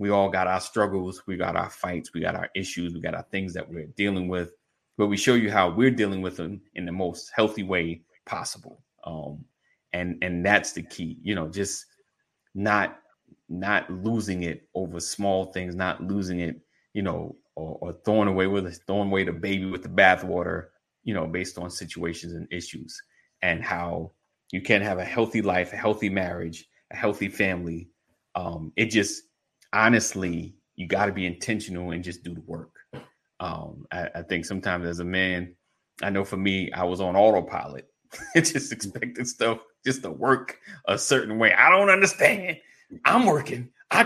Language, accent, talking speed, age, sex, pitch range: English, American, 185 wpm, 30-49, male, 85-105 Hz